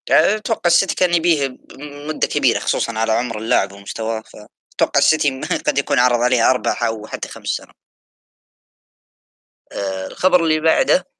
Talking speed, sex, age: 150 wpm, female, 20-39